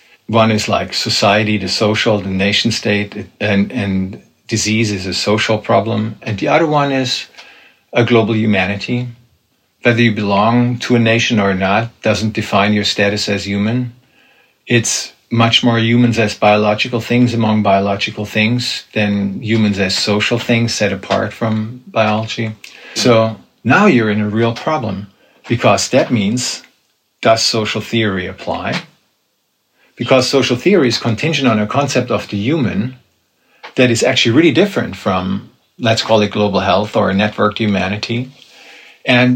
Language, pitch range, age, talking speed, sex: English, 105-125 Hz, 50-69, 145 wpm, male